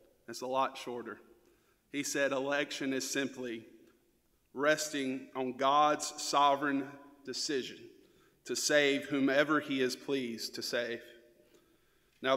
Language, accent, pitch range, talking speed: English, American, 130-175 Hz, 110 wpm